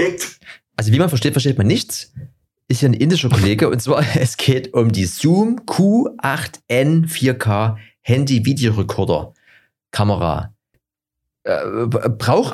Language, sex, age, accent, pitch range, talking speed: German, male, 30-49, German, 105-130 Hz, 115 wpm